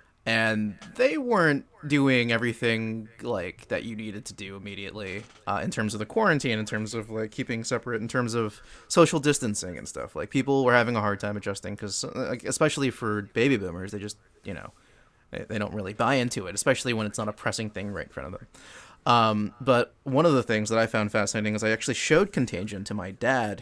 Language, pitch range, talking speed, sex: English, 105-130 Hz, 220 wpm, male